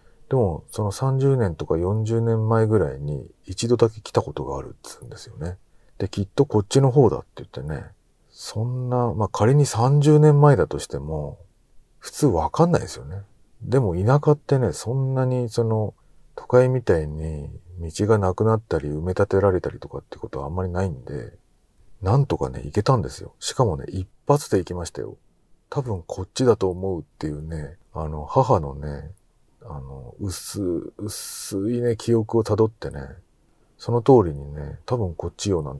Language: Japanese